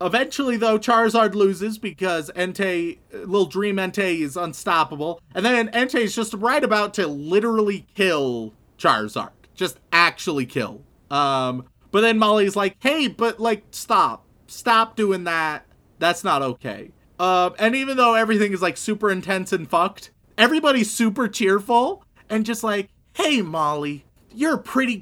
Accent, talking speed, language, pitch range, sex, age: American, 150 wpm, English, 170-220 Hz, male, 30-49